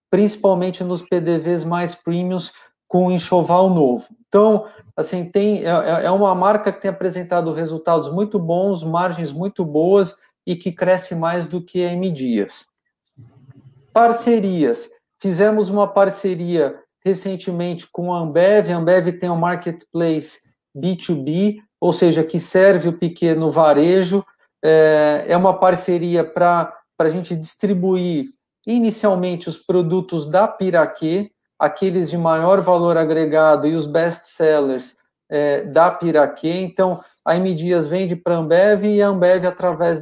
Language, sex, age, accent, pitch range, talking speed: Portuguese, male, 50-69, Brazilian, 165-190 Hz, 135 wpm